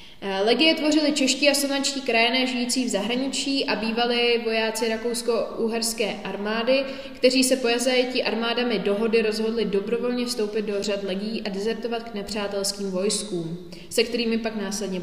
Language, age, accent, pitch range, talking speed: Czech, 20-39, native, 210-245 Hz, 140 wpm